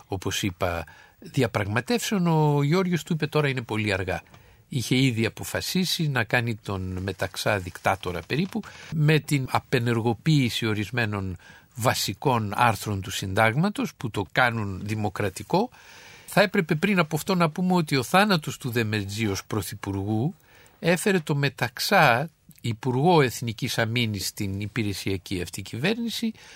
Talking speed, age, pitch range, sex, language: 125 wpm, 50-69, 105-150 Hz, male, Greek